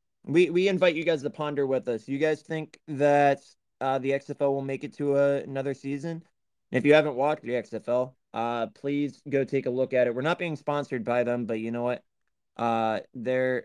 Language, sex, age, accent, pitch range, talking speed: English, male, 20-39, American, 115-140 Hz, 215 wpm